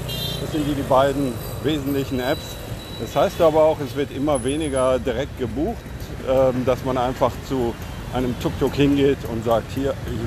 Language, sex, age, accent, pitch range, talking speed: German, male, 50-69, German, 115-145 Hz, 165 wpm